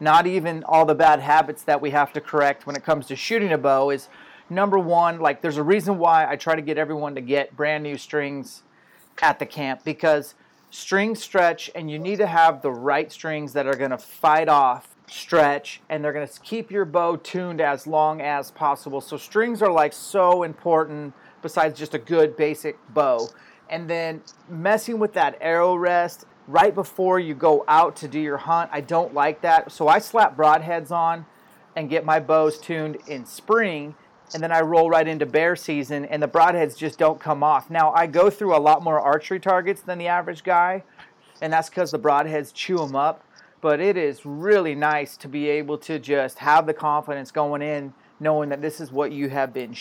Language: English